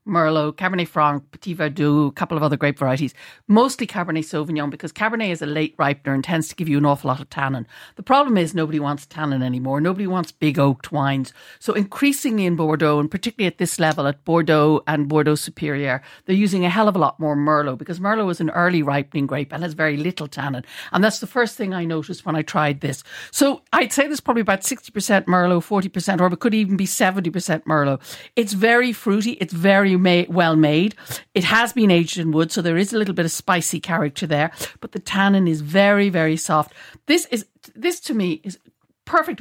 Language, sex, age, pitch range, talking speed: English, female, 60-79, 155-215 Hz, 215 wpm